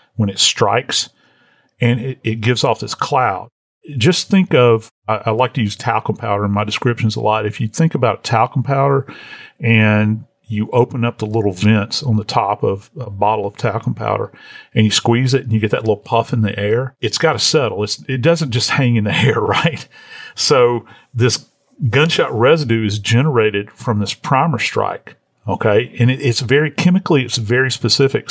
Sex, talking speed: male, 190 wpm